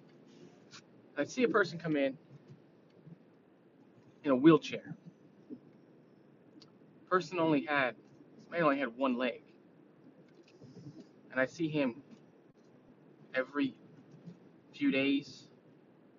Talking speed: 90 wpm